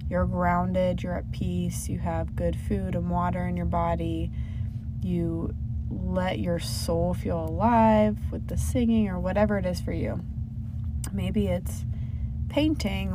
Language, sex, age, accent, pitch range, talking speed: English, female, 20-39, American, 85-110 Hz, 145 wpm